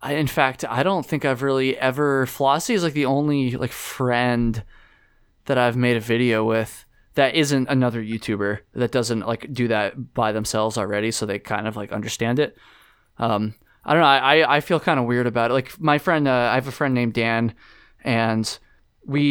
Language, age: English, 20-39